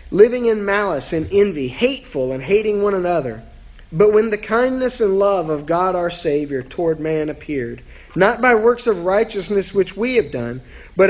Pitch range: 135-205 Hz